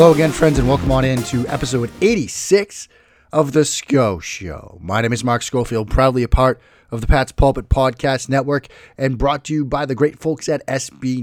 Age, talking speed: 30-49, 205 wpm